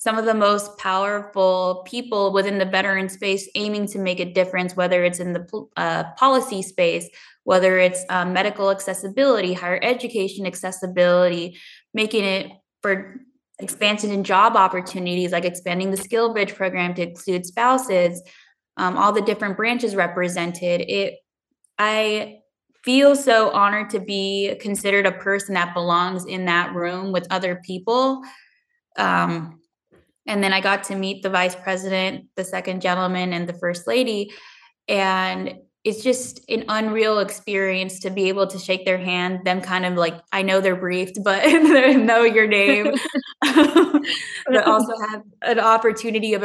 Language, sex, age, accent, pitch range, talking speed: English, female, 10-29, American, 180-215 Hz, 155 wpm